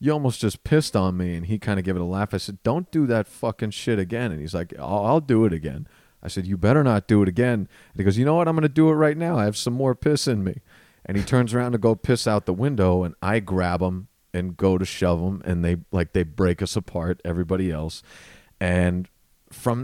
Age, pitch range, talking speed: 40-59, 90-120 Hz, 265 wpm